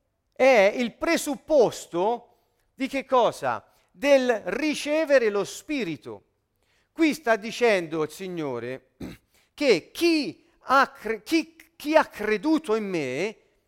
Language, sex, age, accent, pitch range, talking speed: Italian, male, 40-59, native, 185-290 Hz, 95 wpm